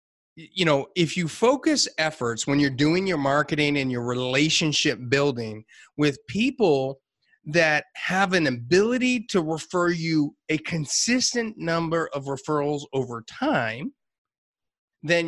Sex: male